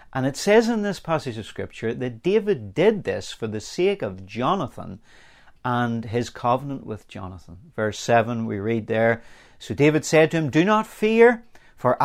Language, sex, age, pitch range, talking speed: English, male, 40-59, 110-160 Hz, 180 wpm